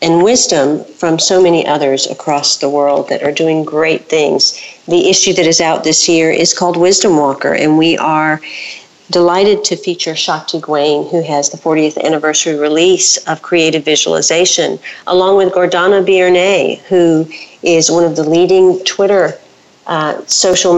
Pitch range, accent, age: 155-180 Hz, American, 50-69